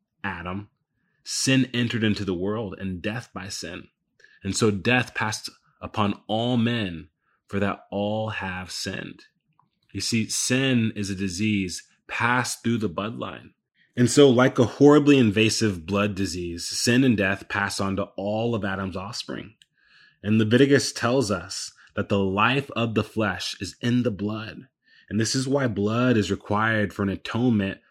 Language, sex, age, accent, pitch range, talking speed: English, male, 20-39, American, 100-125 Hz, 160 wpm